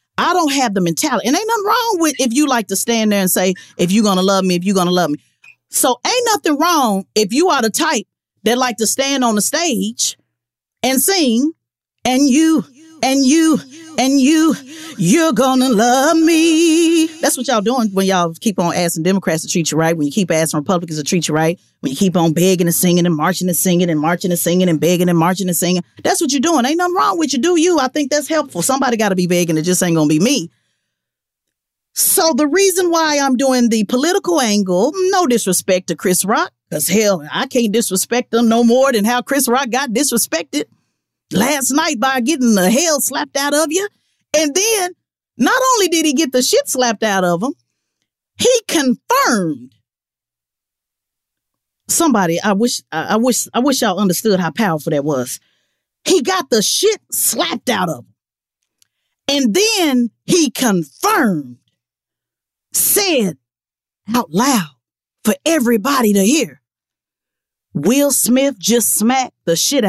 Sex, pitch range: female, 180-300 Hz